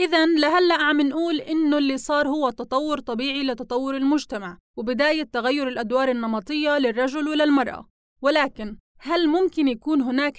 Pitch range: 245-295 Hz